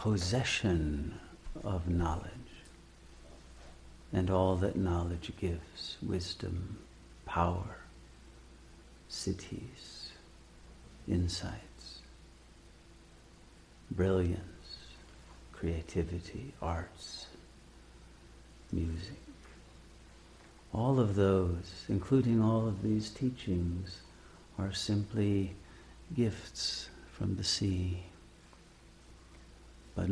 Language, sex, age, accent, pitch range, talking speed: English, male, 60-79, American, 85-100 Hz, 60 wpm